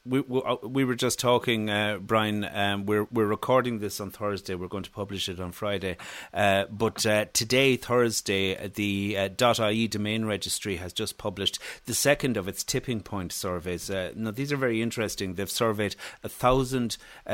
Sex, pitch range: male, 95-120 Hz